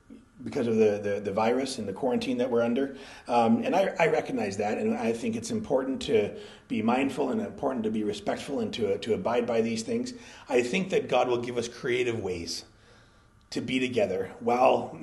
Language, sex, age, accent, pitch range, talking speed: English, male, 30-49, American, 110-145 Hz, 210 wpm